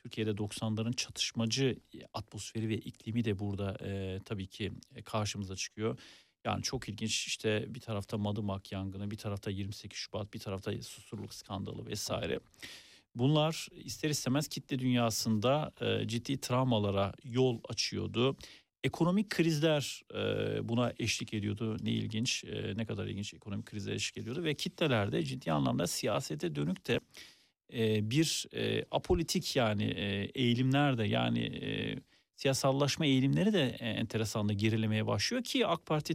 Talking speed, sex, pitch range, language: 135 wpm, male, 110-135 Hz, Turkish